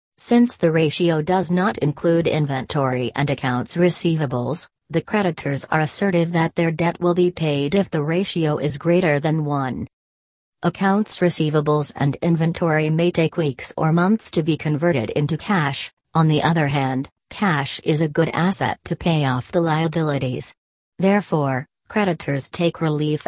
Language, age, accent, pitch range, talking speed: English, 40-59, American, 150-175 Hz, 150 wpm